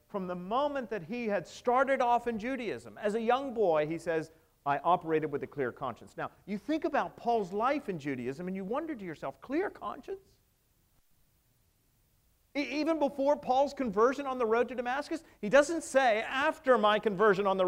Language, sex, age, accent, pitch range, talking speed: English, male, 40-59, American, 200-280 Hz, 185 wpm